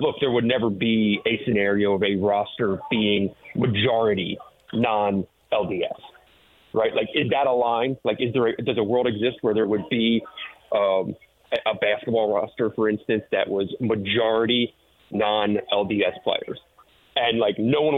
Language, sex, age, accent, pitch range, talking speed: English, male, 30-49, American, 105-120 Hz, 155 wpm